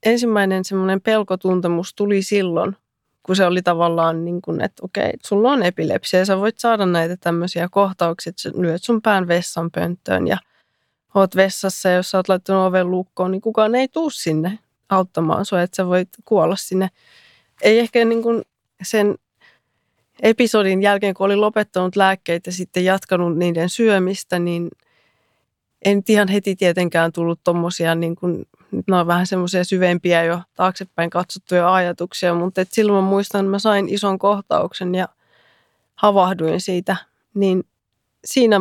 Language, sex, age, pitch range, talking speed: Finnish, female, 20-39, 175-200 Hz, 150 wpm